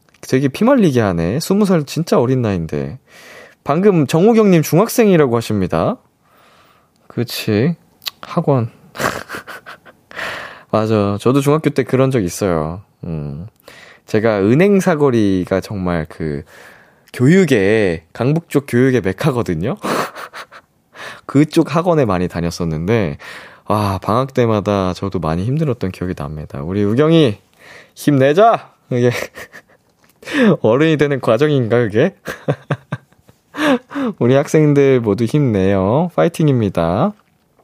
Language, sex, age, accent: Korean, male, 20-39, native